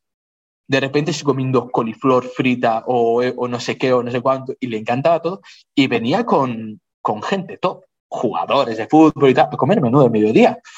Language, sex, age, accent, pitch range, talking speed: English, male, 20-39, Spanish, 115-160 Hz, 195 wpm